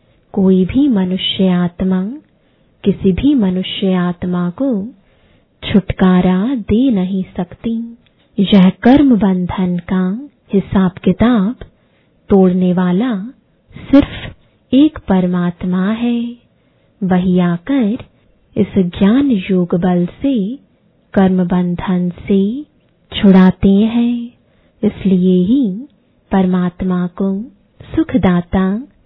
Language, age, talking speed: English, 20-39, 90 wpm